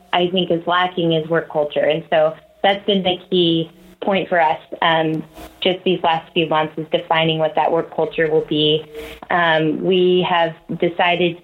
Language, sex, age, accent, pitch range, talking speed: English, female, 20-39, American, 160-180 Hz, 180 wpm